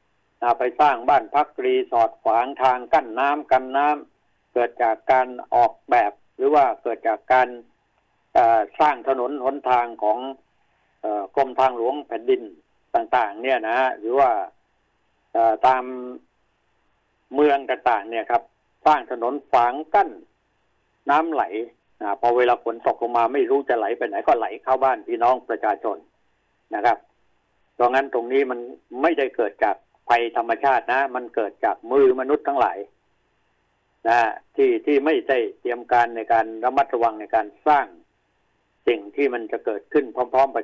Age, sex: 60-79, male